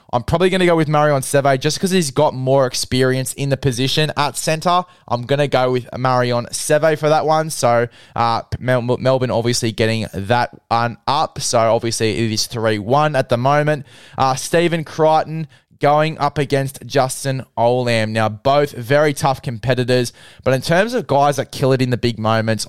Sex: male